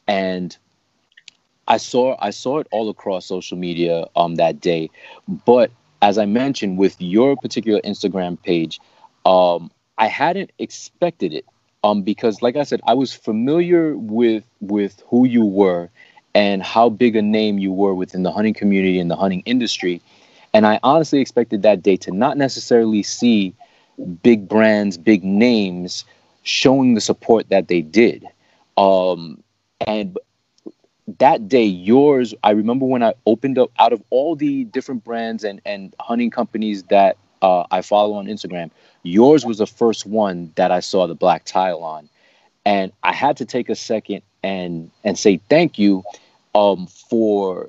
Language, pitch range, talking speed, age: English, 95-115 Hz, 160 wpm, 30-49